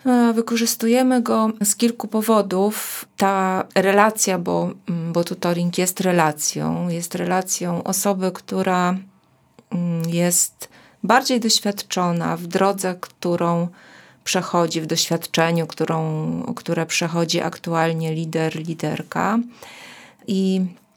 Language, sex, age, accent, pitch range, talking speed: Polish, female, 30-49, native, 170-210 Hz, 90 wpm